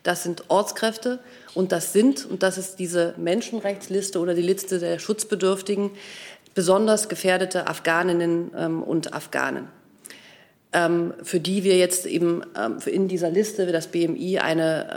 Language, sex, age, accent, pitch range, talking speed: German, female, 40-59, German, 165-190 Hz, 135 wpm